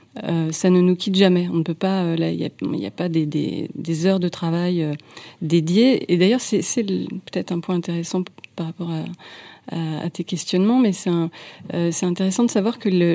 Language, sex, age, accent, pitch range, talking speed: French, female, 40-59, French, 160-190 Hz, 195 wpm